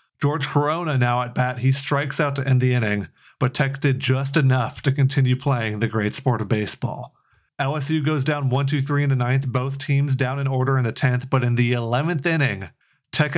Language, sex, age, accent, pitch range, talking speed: English, male, 30-49, American, 125-140 Hz, 205 wpm